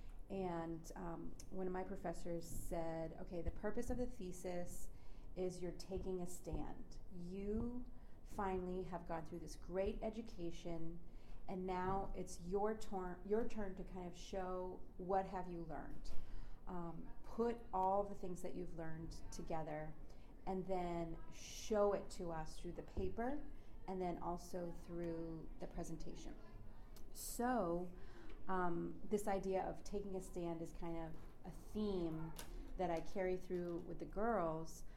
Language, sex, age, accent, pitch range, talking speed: English, female, 30-49, American, 165-190 Hz, 145 wpm